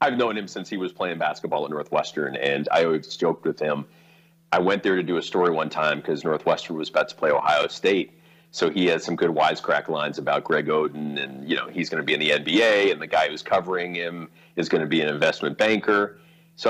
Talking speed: 240 wpm